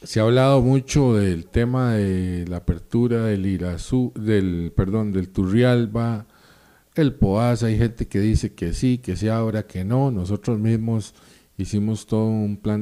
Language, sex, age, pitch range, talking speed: Spanish, male, 40-59, 95-125 Hz, 160 wpm